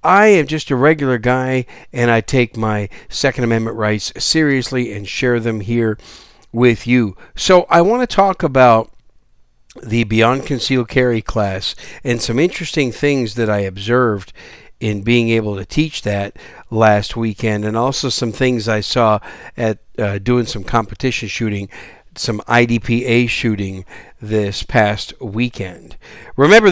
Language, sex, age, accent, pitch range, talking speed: English, male, 50-69, American, 110-135 Hz, 145 wpm